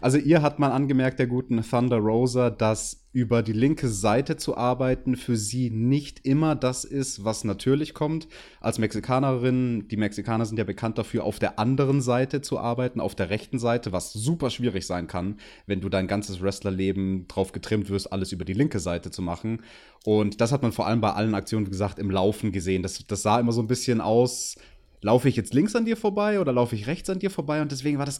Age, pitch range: 30-49, 105-135 Hz